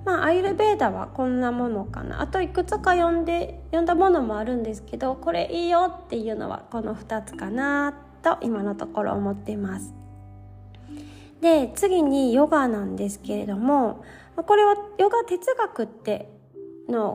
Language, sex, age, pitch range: Japanese, female, 20-39, 220-320 Hz